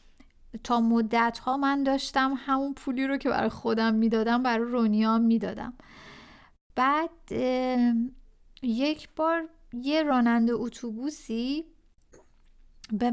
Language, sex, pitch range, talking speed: Persian, female, 220-275 Hz, 95 wpm